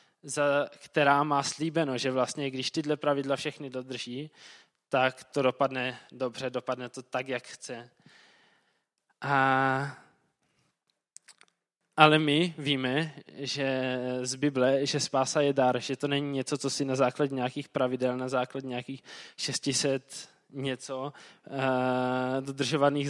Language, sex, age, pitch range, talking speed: Czech, male, 20-39, 130-145 Hz, 115 wpm